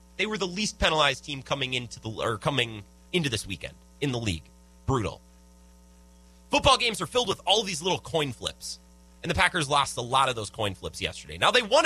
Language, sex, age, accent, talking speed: English, male, 30-49, American, 210 wpm